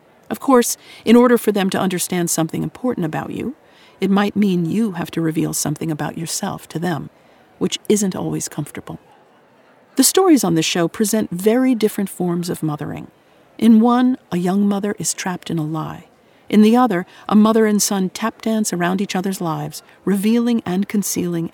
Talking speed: 180 wpm